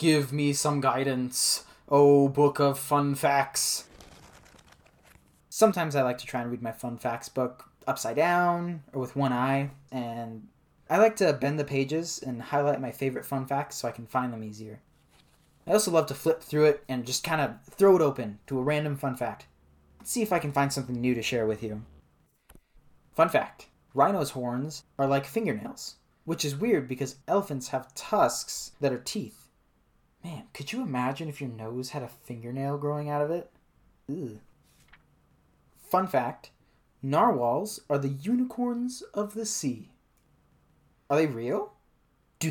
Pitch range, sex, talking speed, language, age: 120-155 Hz, male, 170 wpm, English, 20-39